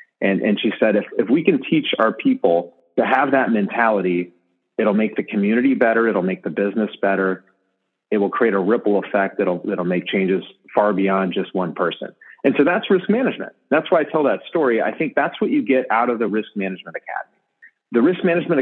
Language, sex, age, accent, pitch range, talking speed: English, male, 40-59, American, 100-150 Hz, 210 wpm